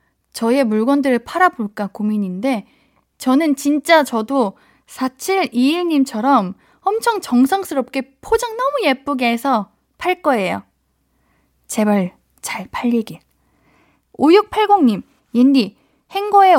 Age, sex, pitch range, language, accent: 20-39, female, 220-315 Hz, Korean, native